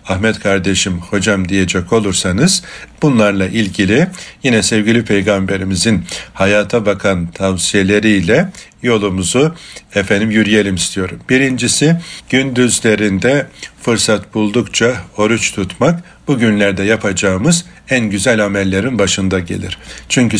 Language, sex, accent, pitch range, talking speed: Turkish, male, native, 95-110 Hz, 90 wpm